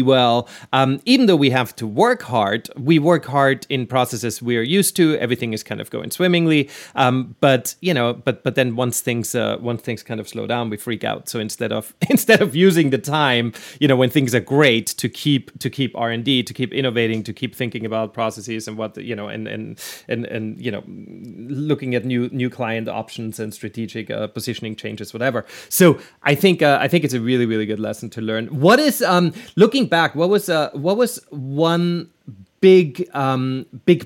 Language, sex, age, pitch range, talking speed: English, male, 30-49, 120-160 Hz, 215 wpm